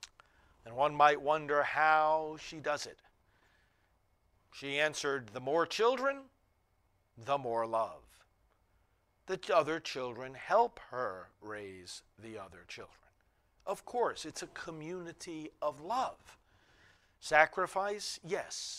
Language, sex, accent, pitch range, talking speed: English, male, American, 100-170 Hz, 110 wpm